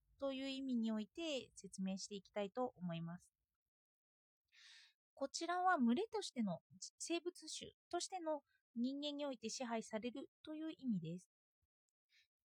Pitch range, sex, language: 220-315 Hz, female, Japanese